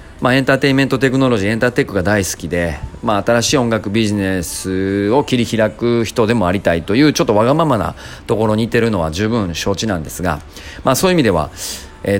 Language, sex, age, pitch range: Japanese, male, 40-59, 90-120 Hz